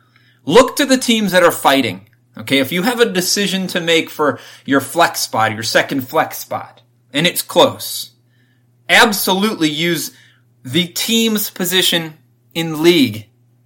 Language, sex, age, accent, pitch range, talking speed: English, male, 30-49, American, 120-175 Hz, 145 wpm